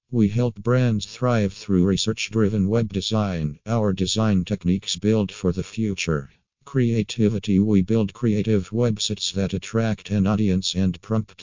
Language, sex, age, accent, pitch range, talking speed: Hindi, male, 50-69, American, 95-110 Hz, 135 wpm